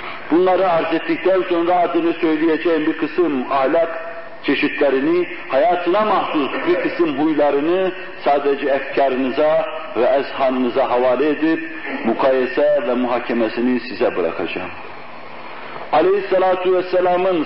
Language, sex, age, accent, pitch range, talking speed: Turkish, male, 60-79, native, 140-220 Hz, 95 wpm